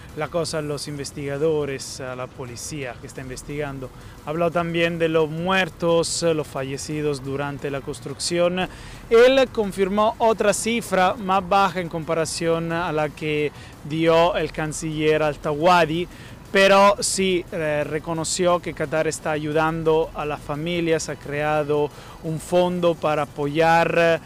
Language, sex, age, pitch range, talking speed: Spanish, male, 30-49, 150-180 Hz, 130 wpm